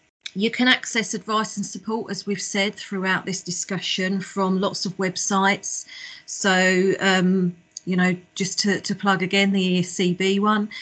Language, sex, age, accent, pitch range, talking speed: English, female, 40-59, British, 175-205 Hz, 155 wpm